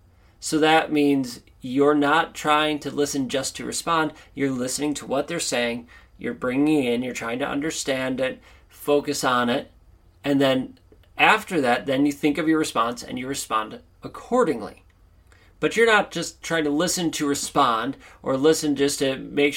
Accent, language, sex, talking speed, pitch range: American, English, male, 170 wpm, 120-155 Hz